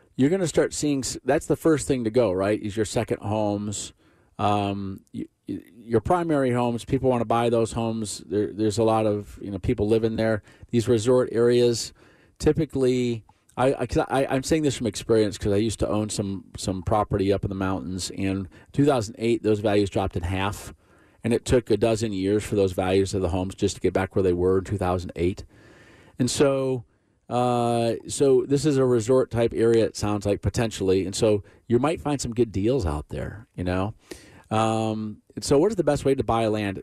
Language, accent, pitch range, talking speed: English, American, 100-120 Hz, 200 wpm